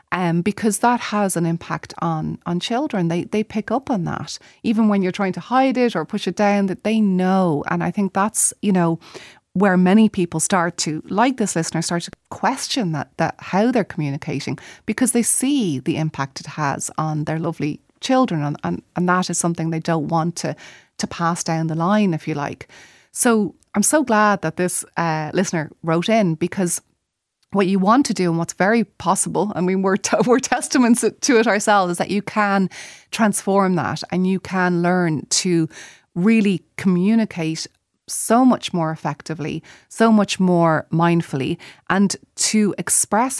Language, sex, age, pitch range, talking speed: English, female, 30-49, 165-210 Hz, 185 wpm